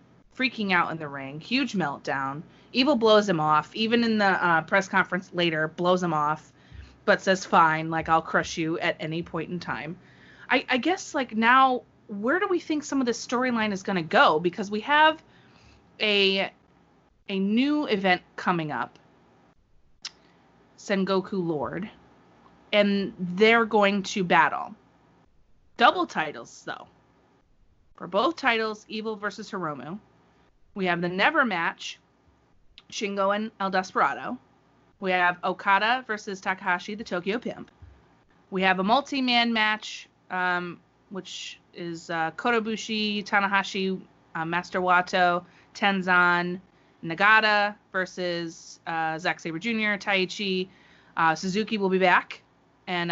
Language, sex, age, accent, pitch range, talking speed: English, female, 30-49, American, 175-220 Hz, 135 wpm